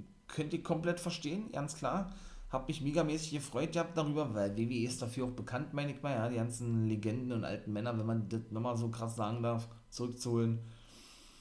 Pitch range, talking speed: 120-165 Hz, 195 wpm